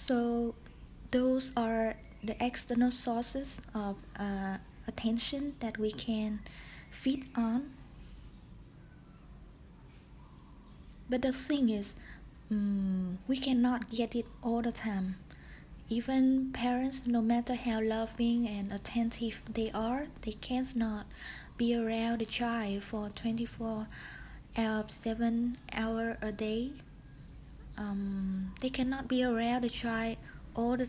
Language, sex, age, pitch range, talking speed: English, female, 20-39, 220-245 Hz, 115 wpm